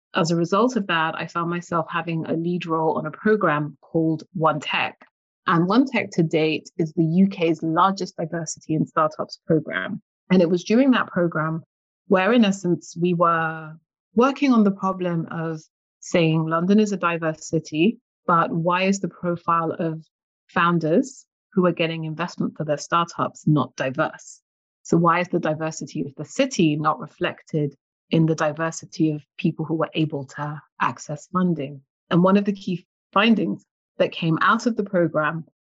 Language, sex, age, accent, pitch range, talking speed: English, female, 30-49, British, 160-190 Hz, 170 wpm